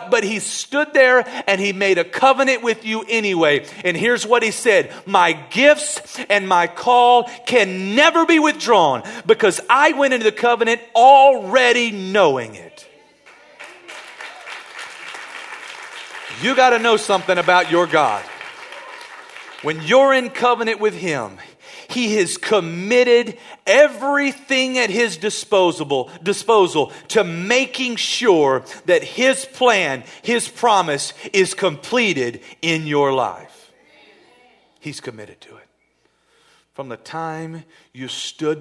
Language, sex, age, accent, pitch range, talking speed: English, male, 40-59, American, 155-265 Hz, 120 wpm